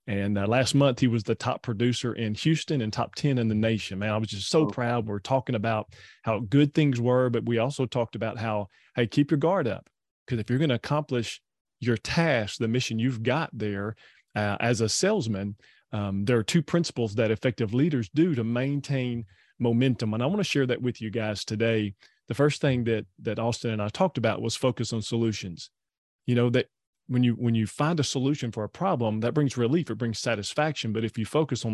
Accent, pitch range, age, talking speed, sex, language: American, 110-145 Hz, 30-49, 225 wpm, male, English